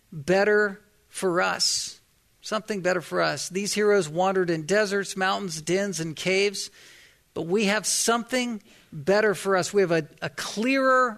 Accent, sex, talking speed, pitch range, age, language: American, male, 150 wpm, 180-215 Hz, 50-69, English